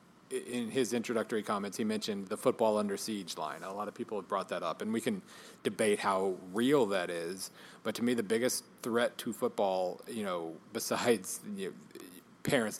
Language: English